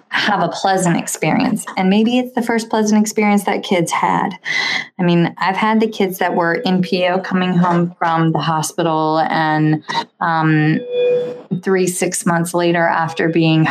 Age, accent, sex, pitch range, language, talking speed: 20-39, American, female, 165-195 Hz, English, 160 wpm